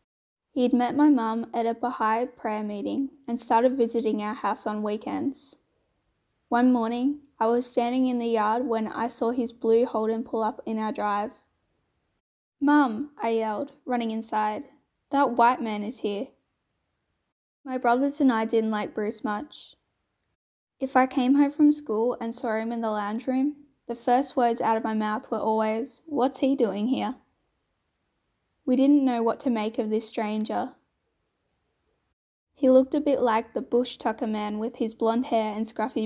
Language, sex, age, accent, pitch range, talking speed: English, female, 10-29, Australian, 220-255 Hz, 170 wpm